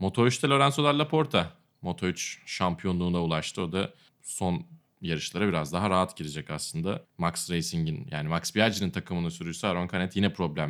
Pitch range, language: 85-140 Hz, Turkish